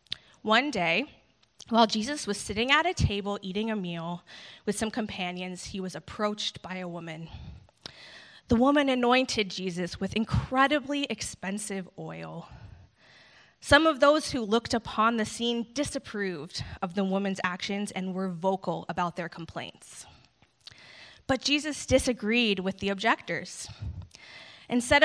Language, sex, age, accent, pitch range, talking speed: English, female, 20-39, American, 190-260 Hz, 130 wpm